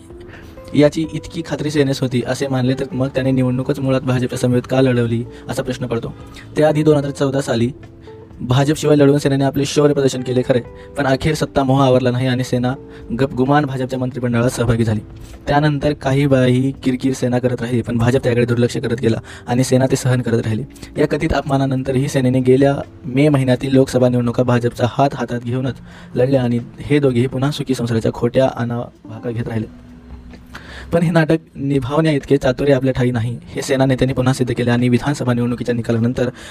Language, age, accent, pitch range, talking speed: Marathi, 20-39, native, 120-140 Hz, 100 wpm